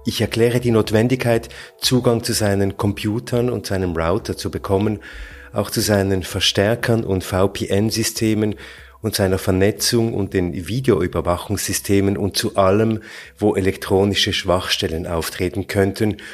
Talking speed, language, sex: 120 wpm, German, male